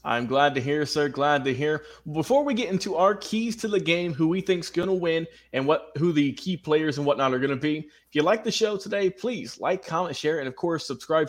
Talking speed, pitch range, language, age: 265 wpm, 140-175 Hz, English, 20-39